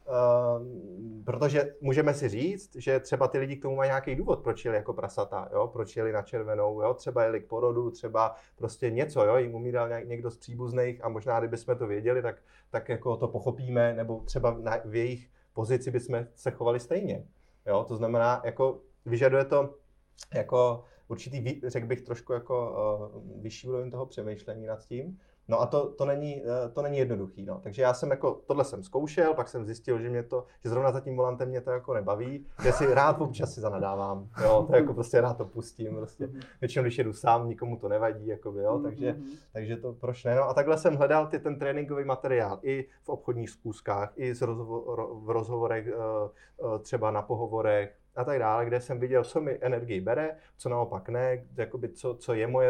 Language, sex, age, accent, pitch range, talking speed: Czech, male, 30-49, native, 115-135 Hz, 195 wpm